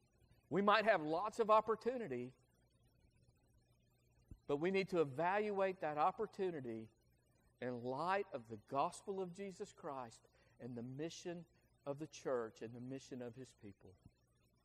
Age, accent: 50-69, American